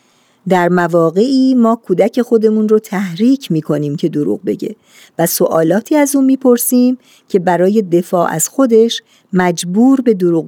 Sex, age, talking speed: female, 50-69, 145 wpm